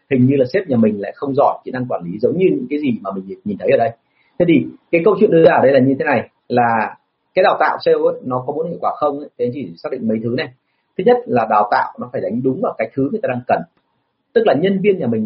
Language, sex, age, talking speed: Vietnamese, male, 30-49, 305 wpm